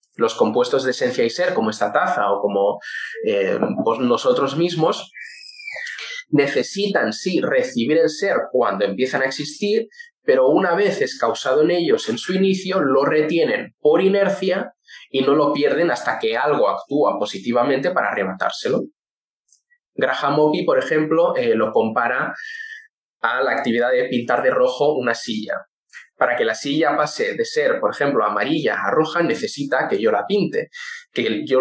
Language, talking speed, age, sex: English, 160 wpm, 20-39, male